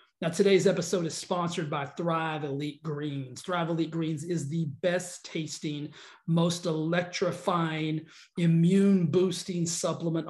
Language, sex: English, male